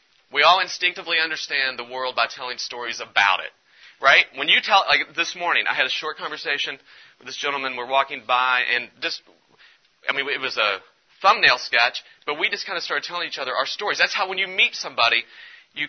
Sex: male